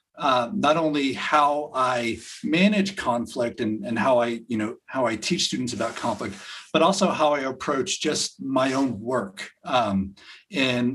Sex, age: male, 50-69